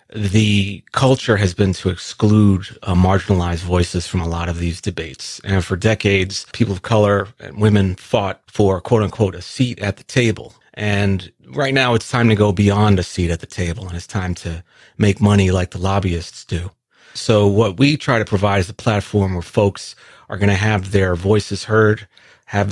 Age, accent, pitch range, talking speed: 40-59, American, 95-110 Hz, 195 wpm